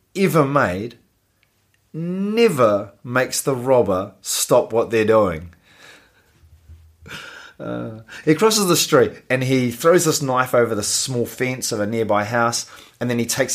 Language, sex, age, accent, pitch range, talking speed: English, male, 30-49, Australian, 105-135 Hz, 140 wpm